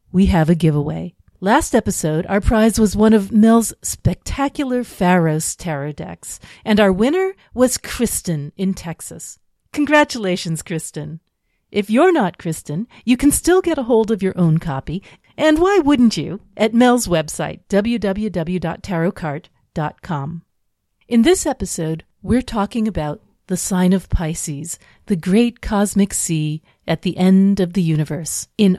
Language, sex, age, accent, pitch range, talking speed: English, female, 40-59, American, 165-235 Hz, 140 wpm